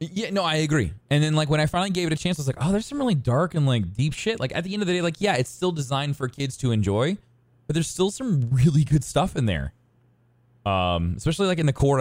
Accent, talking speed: American, 285 wpm